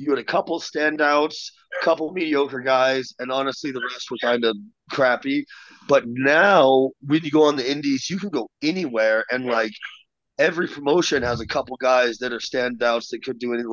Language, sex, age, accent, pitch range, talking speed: English, male, 30-49, American, 125-150 Hz, 190 wpm